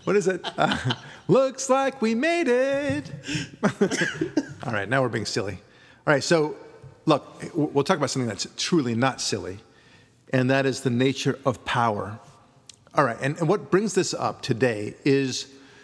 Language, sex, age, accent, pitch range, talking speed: English, male, 40-59, American, 120-145 Hz, 165 wpm